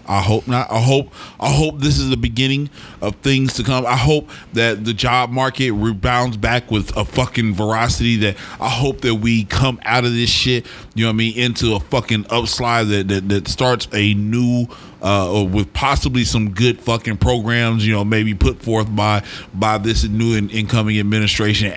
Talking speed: 195 wpm